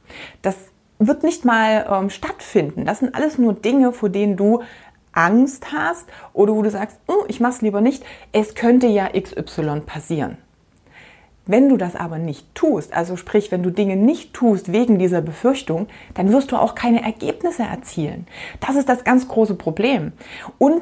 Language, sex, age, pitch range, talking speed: German, female, 30-49, 185-250 Hz, 175 wpm